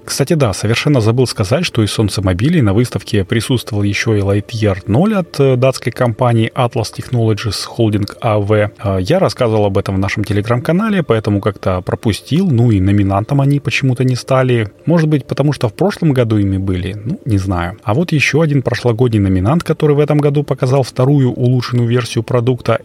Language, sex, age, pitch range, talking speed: Russian, male, 30-49, 100-135 Hz, 175 wpm